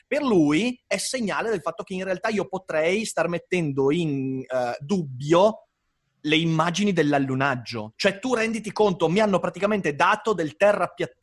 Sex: male